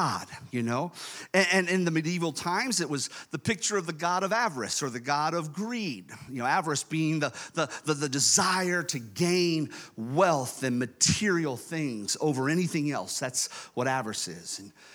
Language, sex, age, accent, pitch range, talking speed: English, male, 40-59, American, 150-225 Hz, 180 wpm